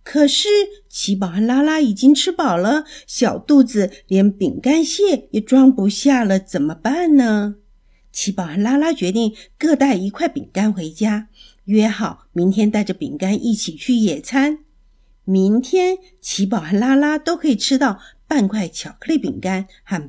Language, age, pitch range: Chinese, 50-69, 195-285 Hz